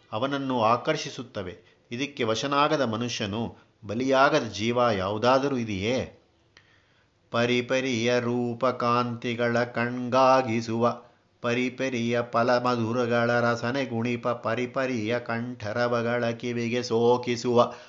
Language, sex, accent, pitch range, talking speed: Kannada, male, native, 115-135 Hz, 75 wpm